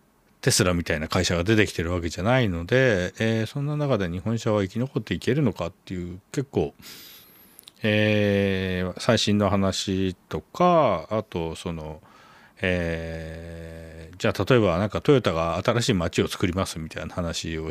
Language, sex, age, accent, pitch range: Japanese, male, 40-59, native, 90-140 Hz